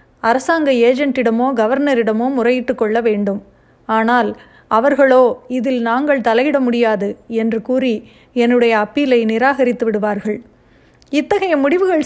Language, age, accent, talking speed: Tamil, 30-49, native, 100 wpm